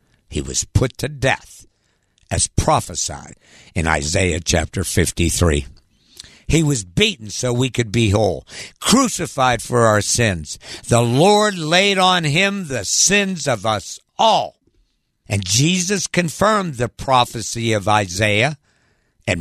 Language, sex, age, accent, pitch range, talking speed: English, male, 60-79, American, 105-175 Hz, 125 wpm